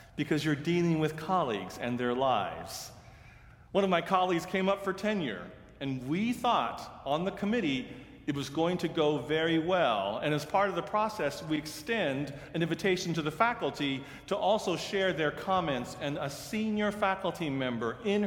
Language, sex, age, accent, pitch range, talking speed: English, male, 40-59, American, 120-170 Hz, 175 wpm